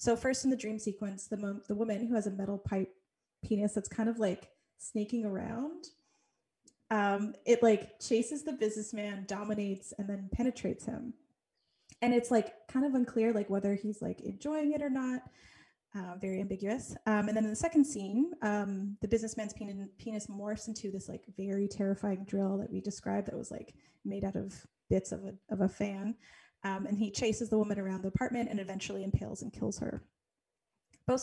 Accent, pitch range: American, 195-230 Hz